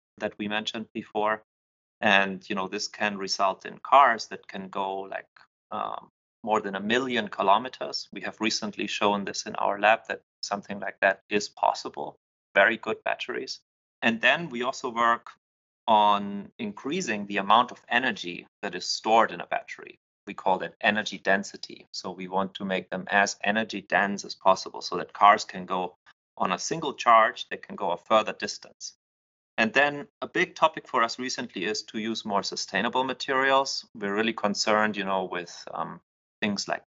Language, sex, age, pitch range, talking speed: English, male, 30-49, 95-110 Hz, 180 wpm